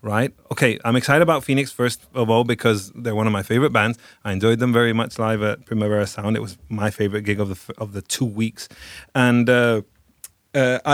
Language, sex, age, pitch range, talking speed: English, male, 30-49, 110-135 Hz, 220 wpm